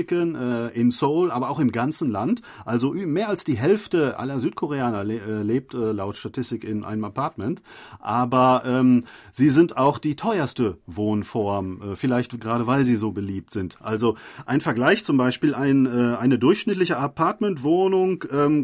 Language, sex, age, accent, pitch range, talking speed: German, male, 40-59, German, 115-150 Hz, 145 wpm